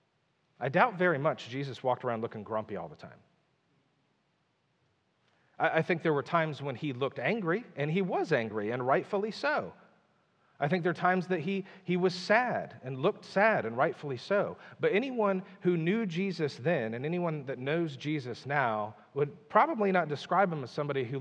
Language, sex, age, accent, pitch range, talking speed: English, male, 40-59, American, 130-180 Hz, 185 wpm